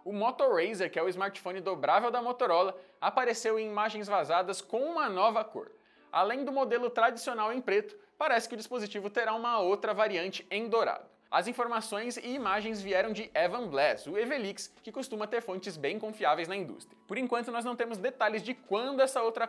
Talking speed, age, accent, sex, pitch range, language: 190 wpm, 20-39, Brazilian, male, 195-250 Hz, Portuguese